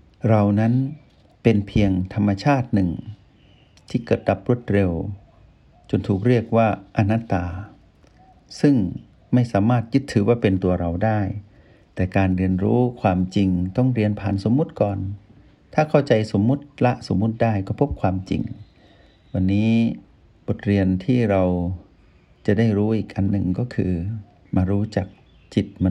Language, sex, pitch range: Thai, male, 95-120 Hz